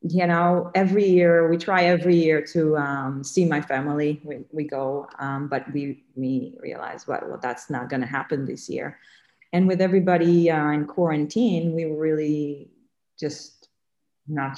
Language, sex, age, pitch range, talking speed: English, female, 30-49, 155-220 Hz, 160 wpm